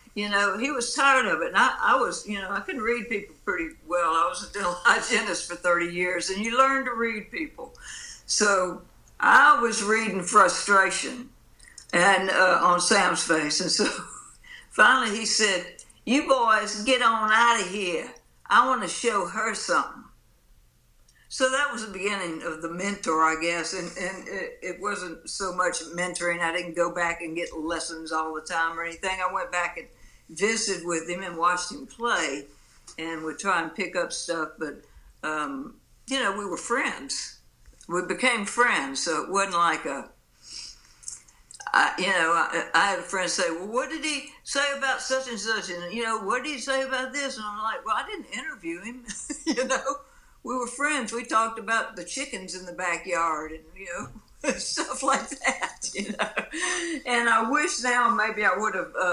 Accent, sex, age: American, female, 60-79